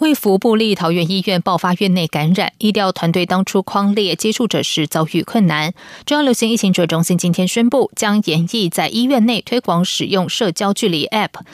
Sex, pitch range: female, 175-240 Hz